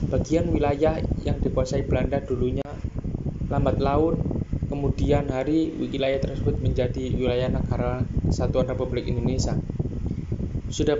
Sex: male